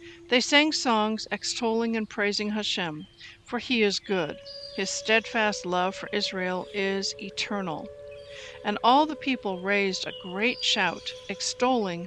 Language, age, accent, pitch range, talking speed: English, 60-79, American, 195-295 Hz, 135 wpm